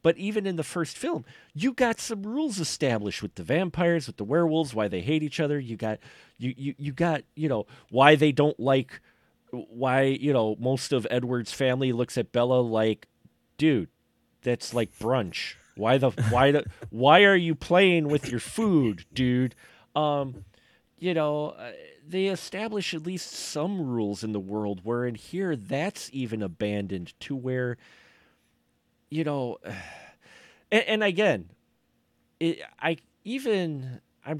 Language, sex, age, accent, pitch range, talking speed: English, male, 40-59, American, 110-160 Hz, 155 wpm